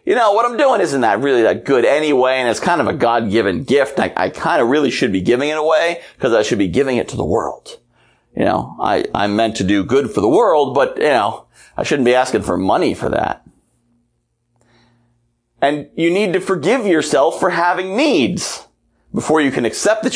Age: 30-49